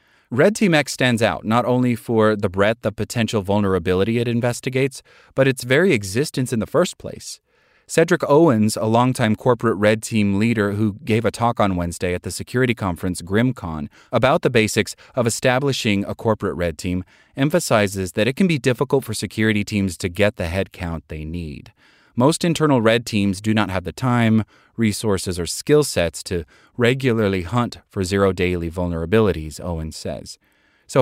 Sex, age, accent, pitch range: male, 30-49, American, 95-120 Hz